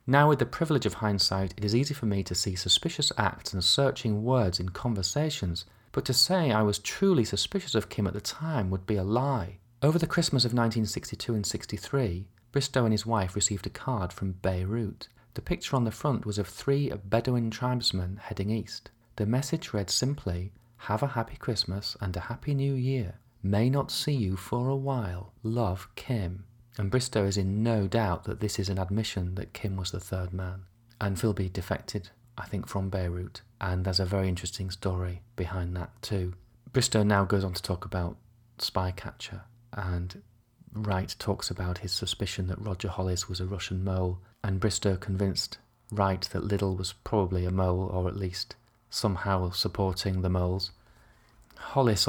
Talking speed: 180 wpm